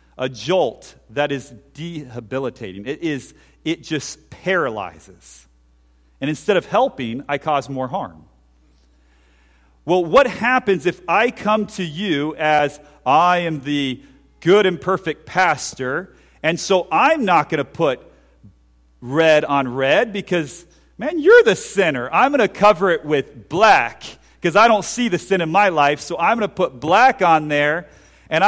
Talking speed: 155 wpm